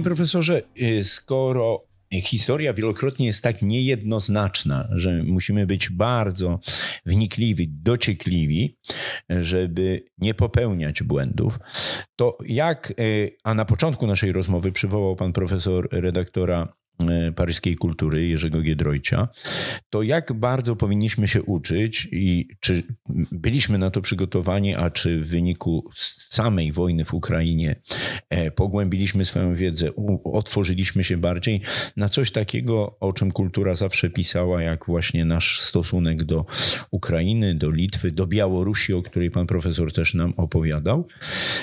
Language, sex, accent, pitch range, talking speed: Polish, male, native, 90-115 Hz, 120 wpm